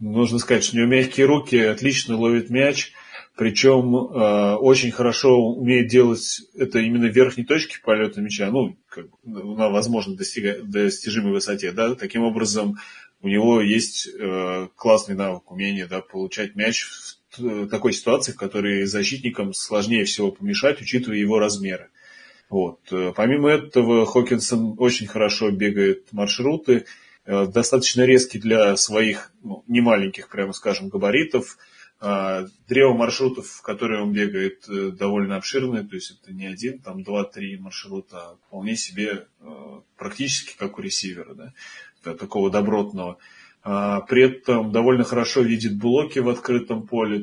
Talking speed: 130 wpm